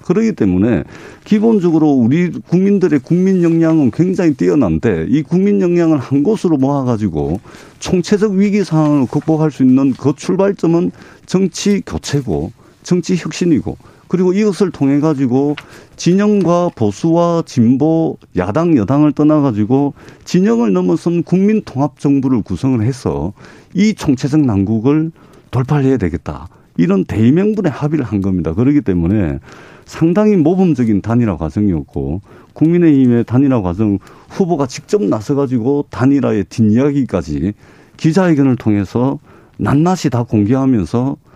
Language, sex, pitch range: Korean, male, 115-170 Hz